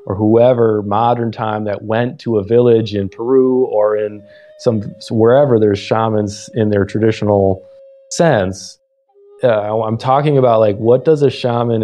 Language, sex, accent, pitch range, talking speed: English, male, American, 110-150 Hz, 150 wpm